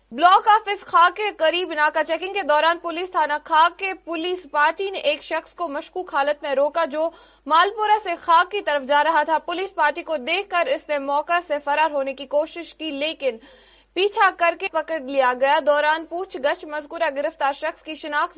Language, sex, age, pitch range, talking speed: Urdu, female, 20-39, 295-360 Hz, 200 wpm